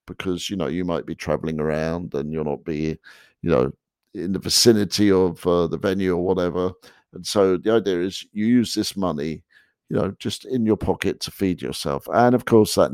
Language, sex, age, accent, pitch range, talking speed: English, male, 50-69, British, 90-110 Hz, 210 wpm